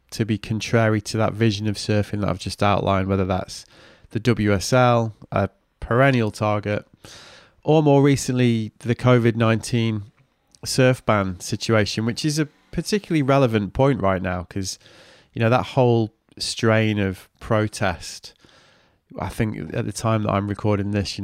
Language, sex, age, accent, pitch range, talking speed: English, male, 20-39, British, 100-120 Hz, 150 wpm